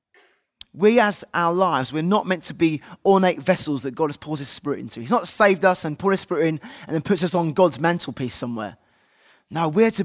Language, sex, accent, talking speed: English, male, British, 225 wpm